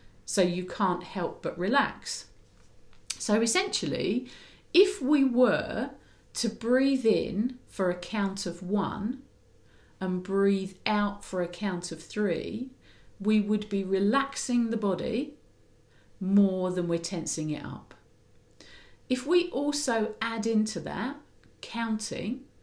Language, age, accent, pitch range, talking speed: English, 50-69, British, 170-235 Hz, 120 wpm